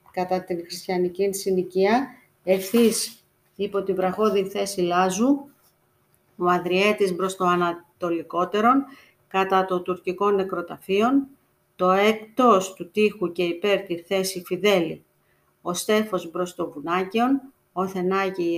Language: Greek